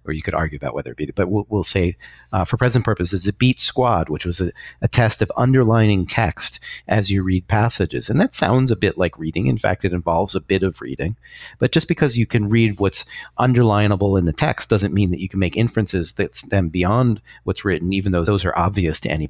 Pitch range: 90-115 Hz